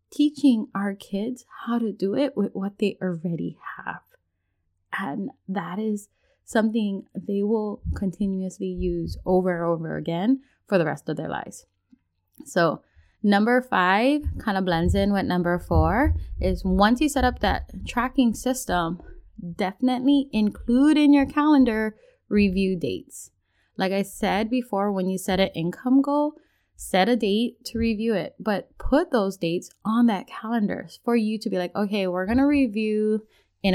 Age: 20-39